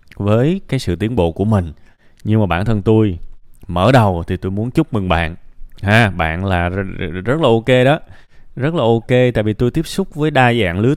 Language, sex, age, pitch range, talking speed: Vietnamese, male, 20-39, 90-125 Hz, 215 wpm